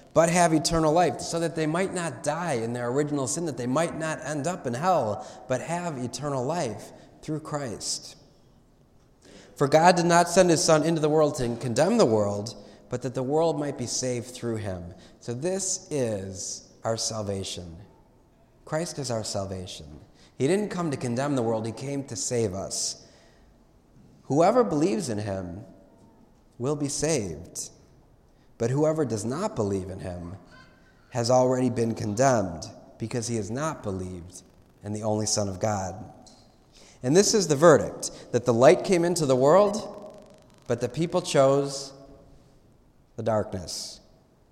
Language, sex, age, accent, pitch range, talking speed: English, male, 30-49, American, 115-160 Hz, 160 wpm